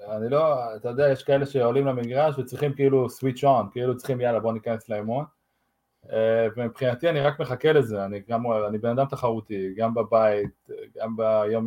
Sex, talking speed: male, 170 wpm